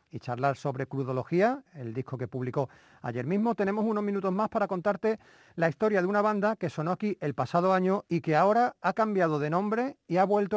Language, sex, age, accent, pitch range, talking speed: Spanish, male, 40-59, Spanish, 155-205 Hz, 210 wpm